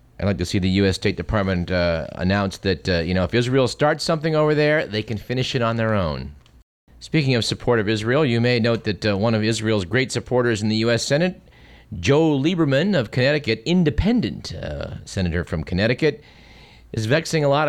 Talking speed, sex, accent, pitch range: 200 wpm, male, American, 100-130 Hz